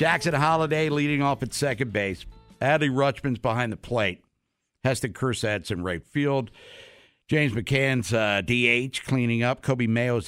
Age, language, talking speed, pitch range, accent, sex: 60-79, English, 145 wpm, 110-145 Hz, American, male